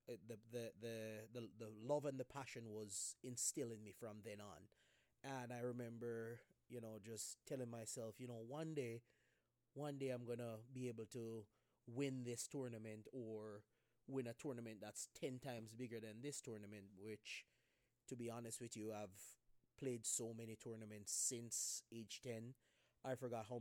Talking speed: 170 wpm